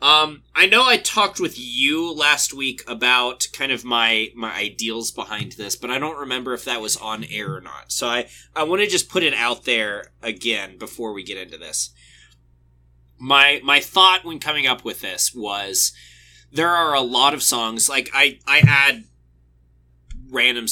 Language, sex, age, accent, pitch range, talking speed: English, male, 20-39, American, 95-140 Hz, 185 wpm